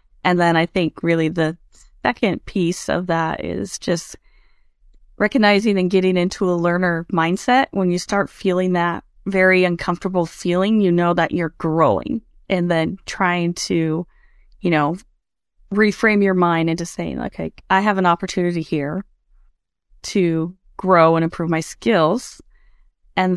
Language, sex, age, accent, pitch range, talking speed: English, female, 30-49, American, 170-195 Hz, 145 wpm